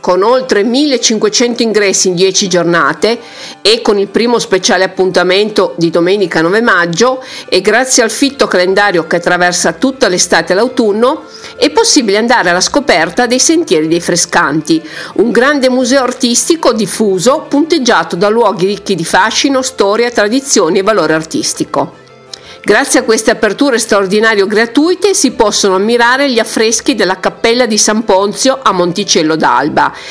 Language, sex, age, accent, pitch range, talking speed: Italian, female, 50-69, native, 195-265 Hz, 145 wpm